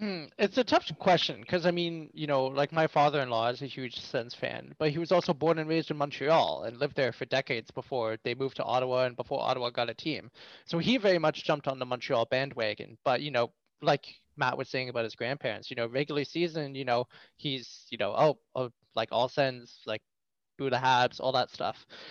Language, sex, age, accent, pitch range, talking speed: English, male, 20-39, American, 130-160 Hz, 230 wpm